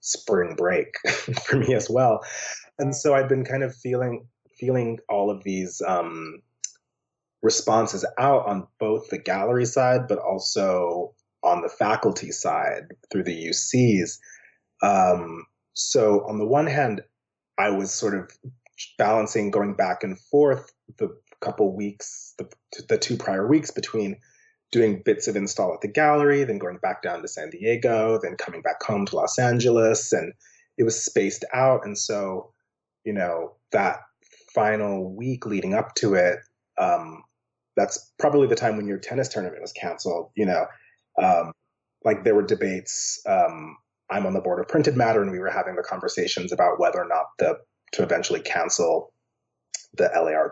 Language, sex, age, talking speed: English, male, 30-49, 165 wpm